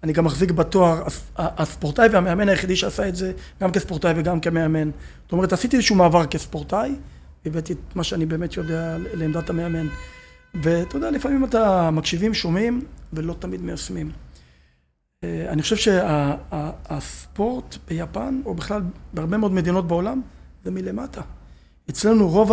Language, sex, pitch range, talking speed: Hebrew, male, 155-195 Hz, 140 wpm